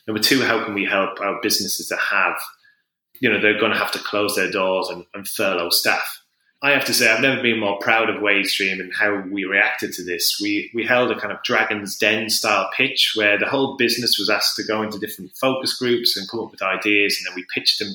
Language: English